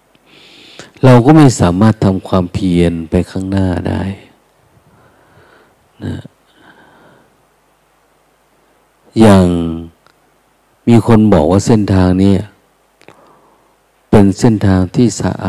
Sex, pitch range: male, 90-110 Hz